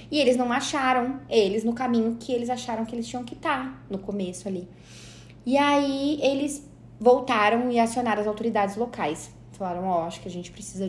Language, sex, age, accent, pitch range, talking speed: Portuguese, female, 20-39, Brazilian, 190-245 Hz, 185 wpm